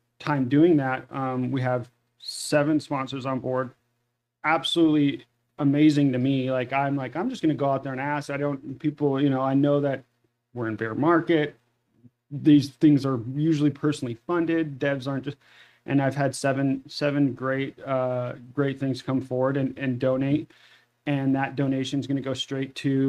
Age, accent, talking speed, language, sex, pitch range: 30-49, American, 180 wpm, English, male, 125-140 Hz